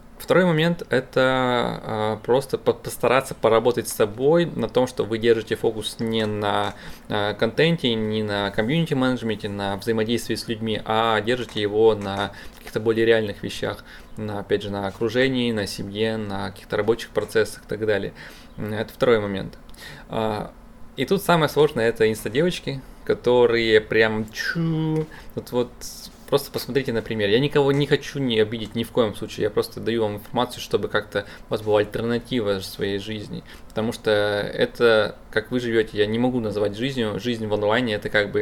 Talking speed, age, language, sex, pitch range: 160 wpm, 20-39, Russian, male, 105-120 Hz